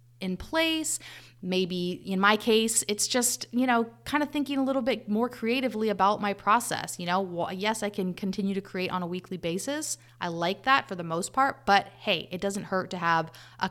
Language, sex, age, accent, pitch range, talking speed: English, female, 30-49, American, 170-220 Hz, 215 wpm